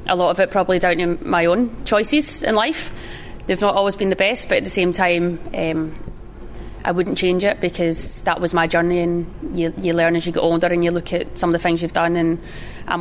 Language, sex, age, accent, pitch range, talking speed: English, female, 20-39, British, 170-195 Hz, 245 wpm